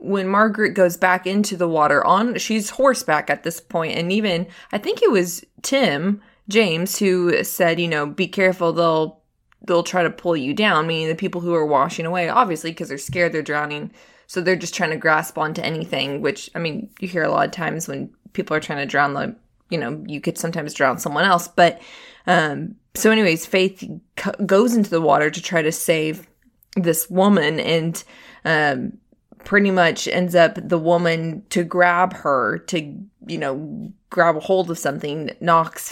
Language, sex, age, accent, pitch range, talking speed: English, female, 20-39, American, 165-195 Hz, 190 wpm